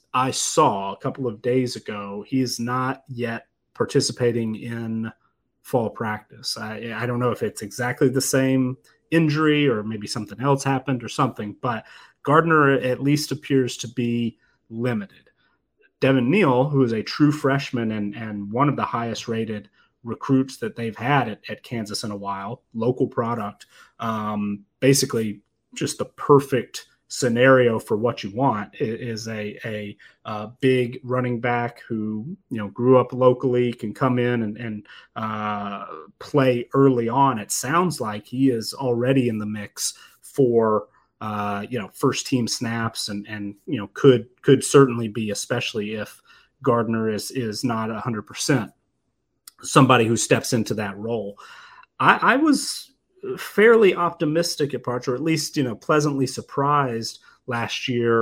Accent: American